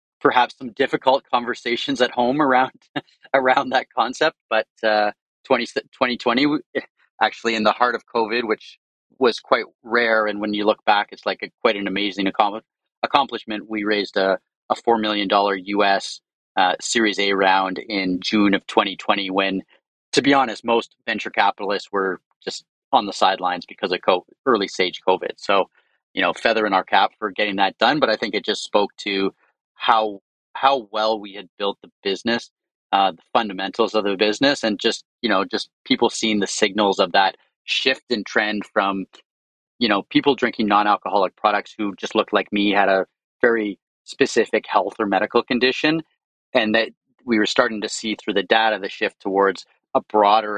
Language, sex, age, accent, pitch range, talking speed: English, male, 30-49, American, 100-115 Hz, 180 wpm